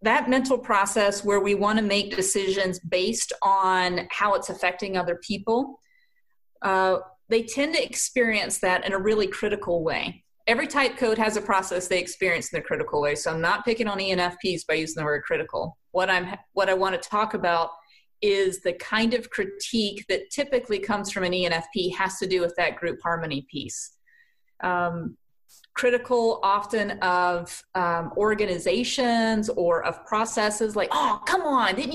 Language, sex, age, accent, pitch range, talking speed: English, female, 30-49, American, 185-240 Hz, 165 wpm